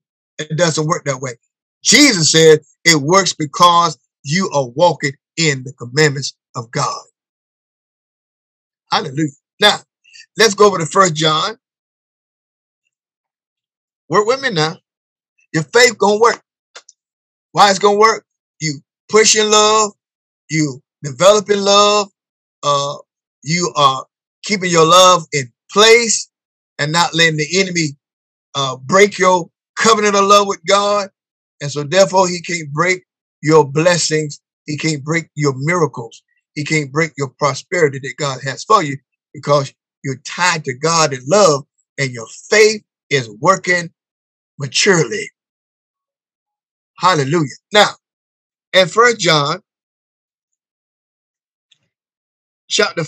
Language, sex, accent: English, male, American